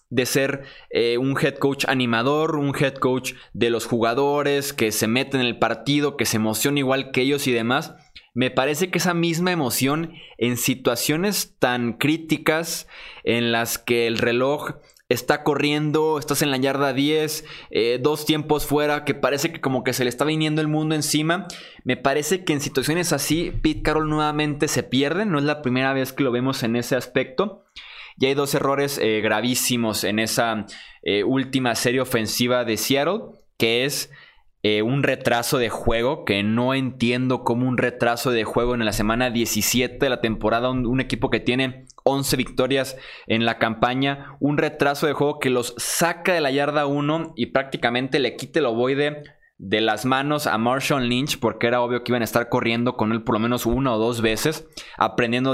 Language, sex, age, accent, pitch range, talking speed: Spanish, male, 20-39, Mexican, 120-150 Hz, 190 wpm